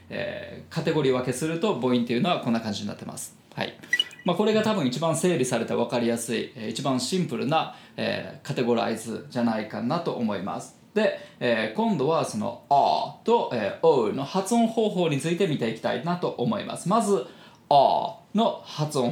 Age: 20-39